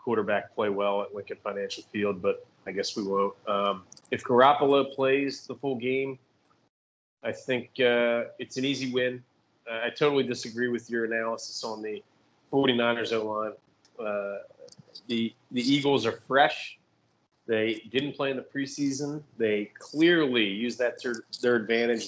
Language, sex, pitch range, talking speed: English, male, 110-135 Hz, 160 wpm